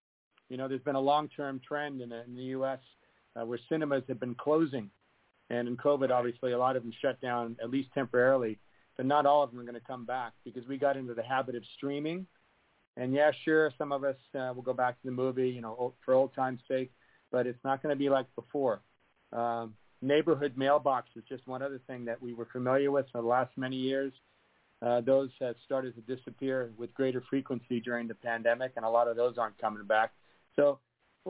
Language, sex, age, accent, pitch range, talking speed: English, male, 50-69, American, 120-135 Hz, 220 wpm